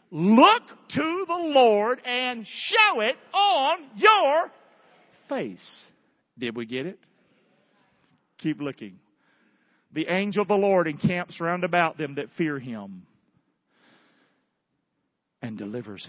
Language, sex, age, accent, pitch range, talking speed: English, male, 50-69, American, 125-200 Hz, 110 wpm